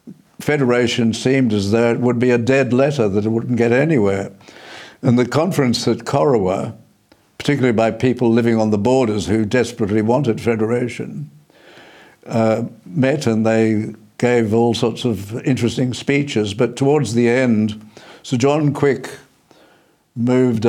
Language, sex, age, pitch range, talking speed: English, male, 60-79, 115-130 Hz, 140 wpm